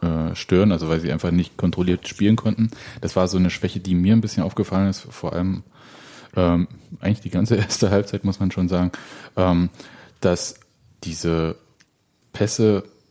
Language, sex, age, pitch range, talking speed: German, male, 20-39, 90-110 Hz, 165 wpm